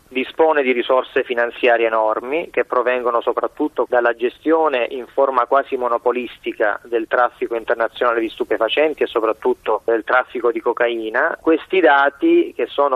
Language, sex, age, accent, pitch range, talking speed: Italian, male, 30-49, native, 125-150 Hz, 135 wpm